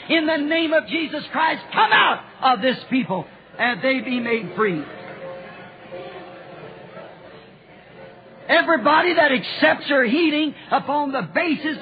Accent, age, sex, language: American, 50-69, male, English